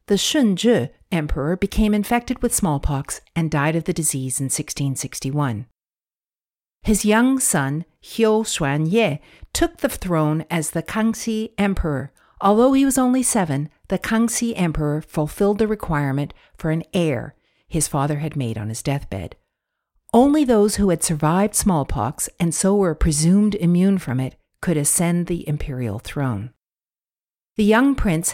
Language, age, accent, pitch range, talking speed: English, 50-69, American, 145-210 Hz, 145 wpm